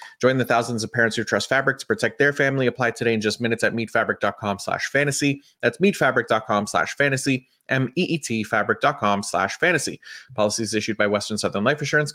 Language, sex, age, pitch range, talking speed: English, male, 30-49, 110-140 Hz, 165 wpm